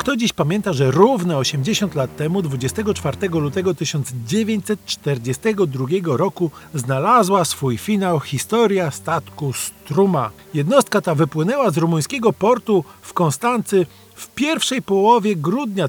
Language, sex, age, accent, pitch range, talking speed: Polish, male, 40-59, native, 150-210 Hz, 115 wpm